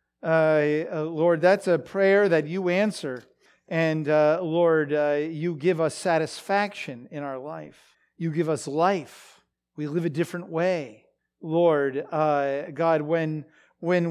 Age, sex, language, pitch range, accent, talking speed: 40-59, male, English, 145-180 Hz, American, 140 wpm